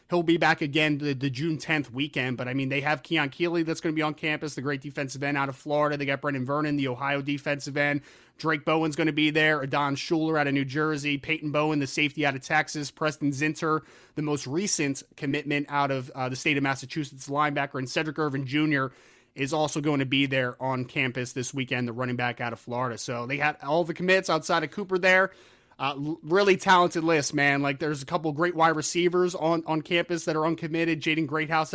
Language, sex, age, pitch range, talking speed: English, male, 30-49, 135-160 Hz, 225 wpm